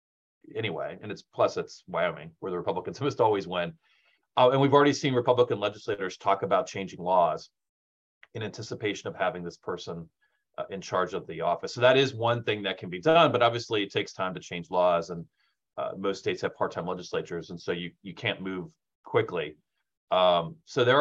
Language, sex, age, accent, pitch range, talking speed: English, male, 30-49, American, 85-120 Hz, 195 wpm